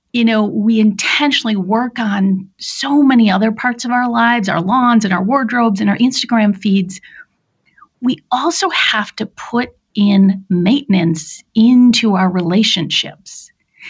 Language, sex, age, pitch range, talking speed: English, female, 40-59, 185-235 Hz, 140 wpm